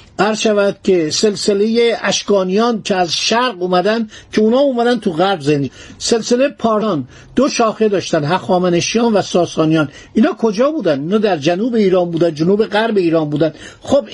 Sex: male